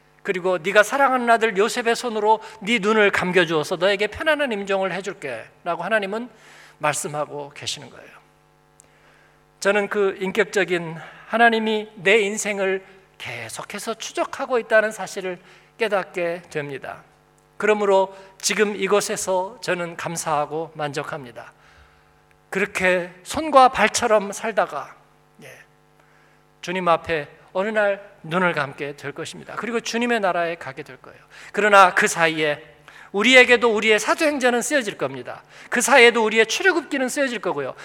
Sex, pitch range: male, 170-220 Hz